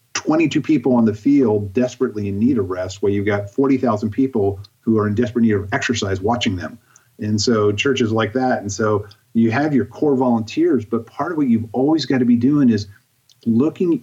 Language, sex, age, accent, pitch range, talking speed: English, male, 40-59, American, 100-120 Hz, 210 wpm